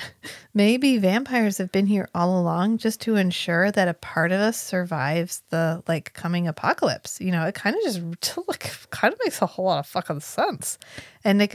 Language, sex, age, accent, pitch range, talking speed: English, female, 30-49, American, 175-215 Hz, 190 wpm